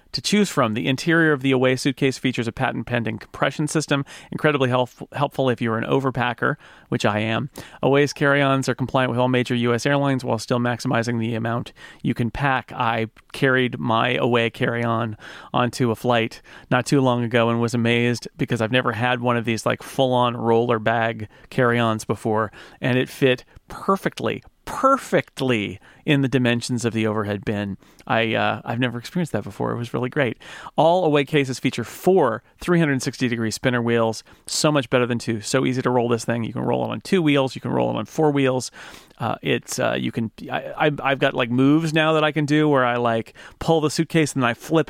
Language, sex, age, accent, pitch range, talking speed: English, male, 40-59, American, 115-140 Hz, 210 wpm